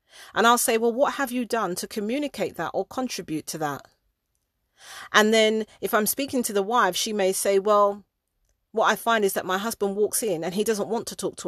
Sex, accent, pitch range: female, British, 180-220 Hz